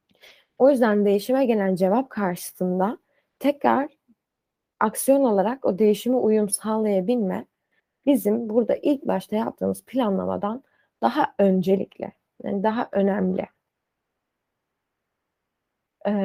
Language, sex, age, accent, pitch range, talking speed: Turkish, female, 20-39, native, 195-255 Hz, 90 wpm